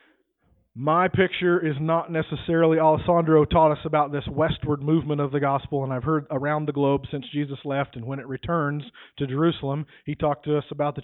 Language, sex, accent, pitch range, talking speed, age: English, male, American, 130-145 Hz, 195 wpm, 40-59